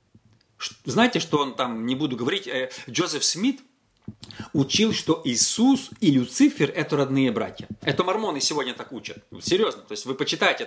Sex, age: male, 40-59